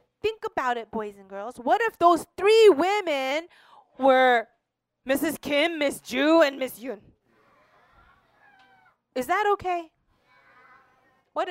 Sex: female